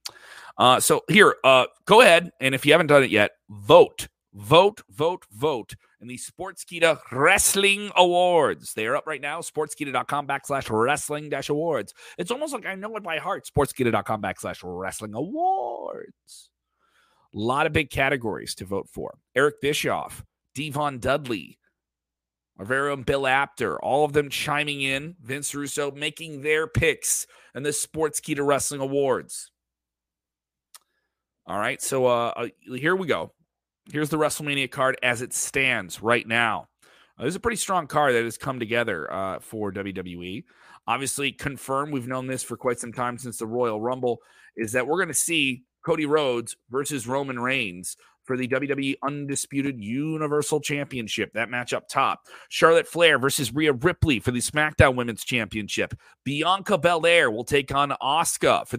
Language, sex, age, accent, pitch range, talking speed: English, male, 30-49, American, 120-155 Hz, 155 wpm